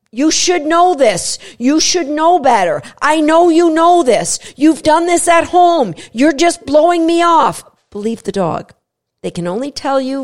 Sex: female